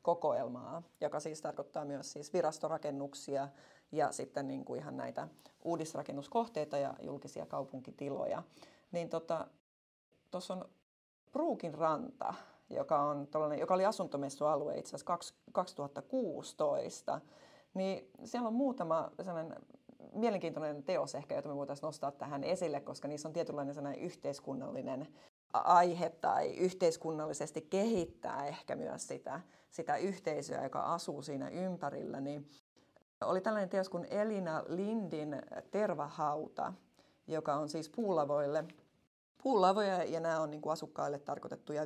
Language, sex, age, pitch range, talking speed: Finnish, female, 30-49, 145-185 Hz, 115 wpm